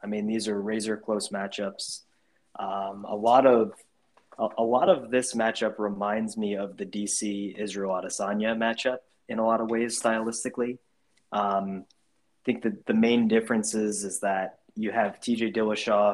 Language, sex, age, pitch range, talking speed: English, male, 20-39, 100-115 Hz, 165 wpm